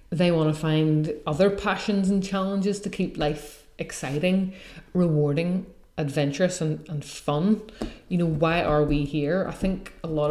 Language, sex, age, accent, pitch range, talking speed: English, female, 30-49, Irish, 155-190 Hz, 155 wpm